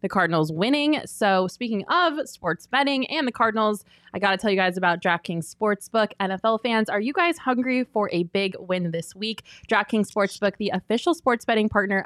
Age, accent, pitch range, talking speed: 20-39, American, 180-225 Hz, 195 wpm